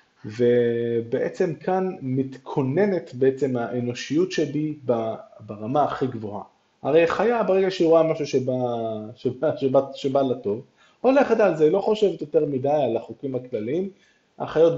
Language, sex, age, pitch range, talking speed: Hebrew, male, 20-39, 115-160 Hz, 125 wpm